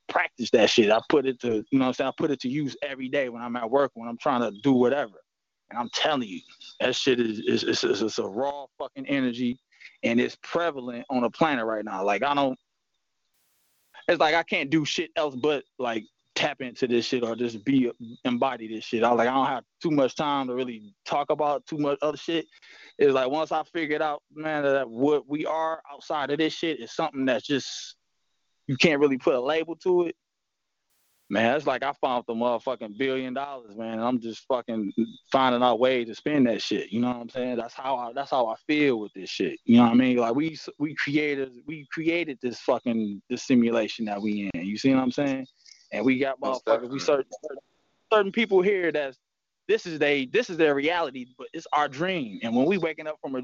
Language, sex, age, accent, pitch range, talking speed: English, male, 20-39, American, 120-155 Hz, 225 wpm